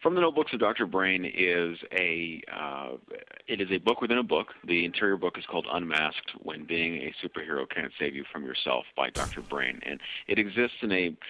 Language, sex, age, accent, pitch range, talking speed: English, male, 40-59, American, 85-105 Hz, 205 wpm